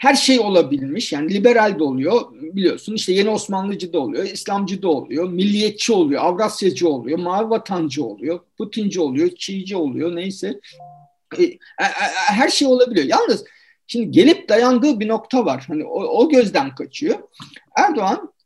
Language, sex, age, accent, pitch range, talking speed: Turkish, male, 50-69, native, 185-275 Hz, 145 wpm